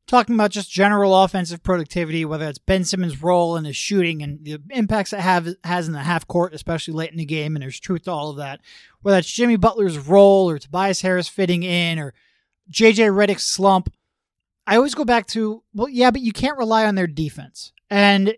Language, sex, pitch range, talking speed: English, male, 165-215 Hz, 210 wpm